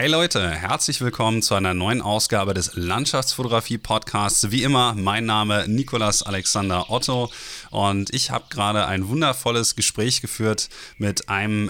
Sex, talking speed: male, 140 wpm